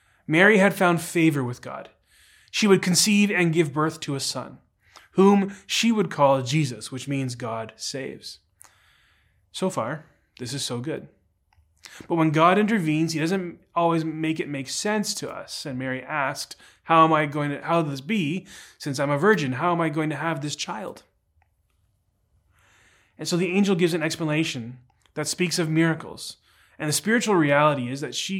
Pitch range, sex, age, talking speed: 125-170 Hz, male, 20-39, 180 wpm